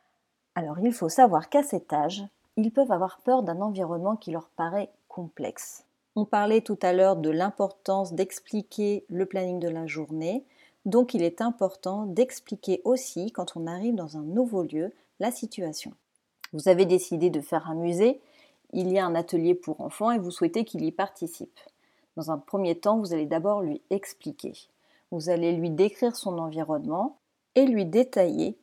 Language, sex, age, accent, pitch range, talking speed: French, female, 40-59, French, 175-240 Hz, 175 wpm